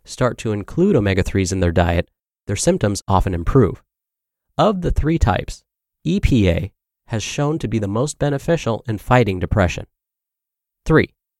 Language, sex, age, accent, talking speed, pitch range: English, male, 30-49, American, 140 wpm, 95-140 Hz